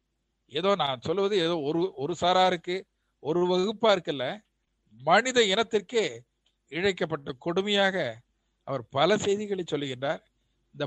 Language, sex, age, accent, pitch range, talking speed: Tamil, male, 50-69, native, 150-205 Hz, 105 wpm